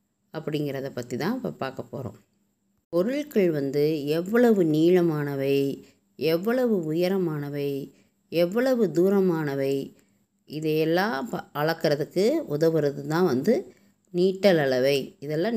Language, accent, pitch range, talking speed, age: Tamil, native, 155-195 Hz, 75 wpm, 20-39